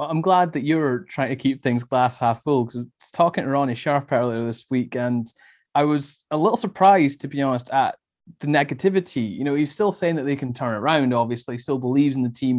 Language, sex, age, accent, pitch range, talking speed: English, male, 20-39, British, 125-155 Hz, 250 wpm